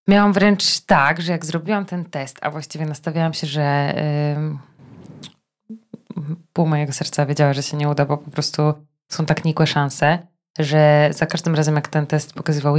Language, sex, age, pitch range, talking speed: Polish, female, 20-39, 145-170 Hz, 170 wpm